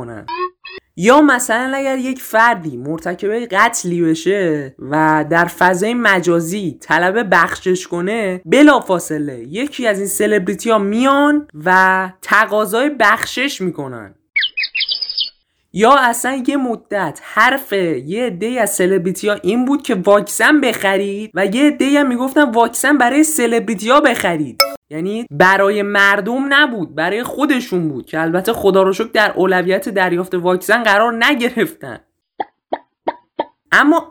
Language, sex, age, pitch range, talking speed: Persian, male, 20-39, 185-260 Hz, 115 wpm